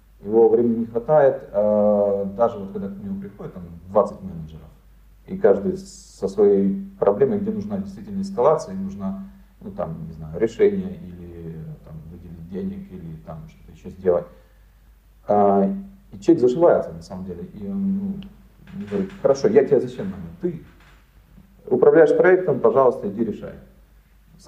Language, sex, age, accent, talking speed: Ukrainian, male, 40-59, native, 140 wpm